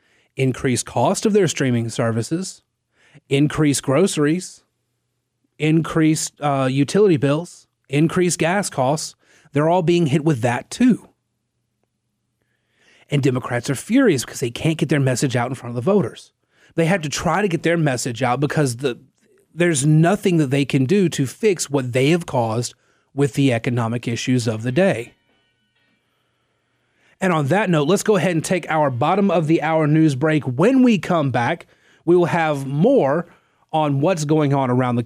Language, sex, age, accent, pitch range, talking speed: English, male, 30-49, American, 130-175 Hz, 170 wpm